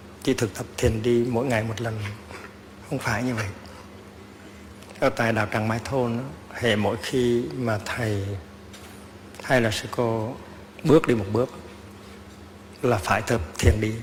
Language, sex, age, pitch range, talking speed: Vietnamese, male, 60-79, 100-115 Hz, 160 wpm